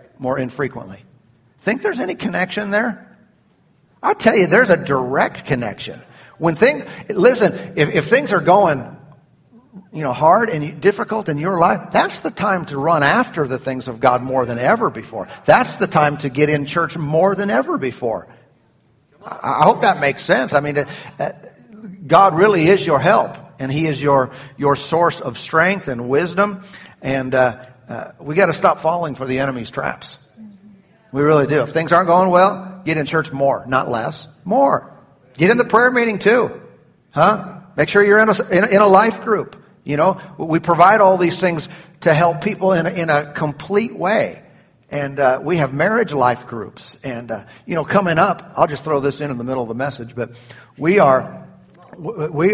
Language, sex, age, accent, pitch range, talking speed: English, male, 50-69, American, 135-190 Hz, 185 wpm